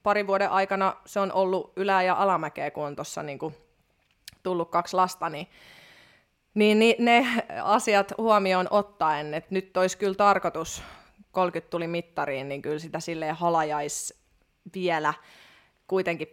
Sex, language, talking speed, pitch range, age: female, Finnish, 135 wpm, 165-200 Hz, 20-39